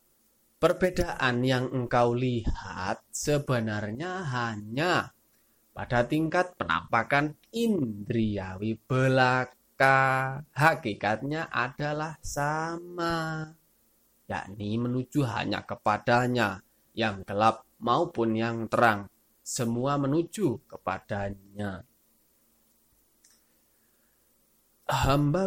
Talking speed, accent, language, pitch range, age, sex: 65 wpm, native, Indonesian, 105-140 Hz, 20-39, male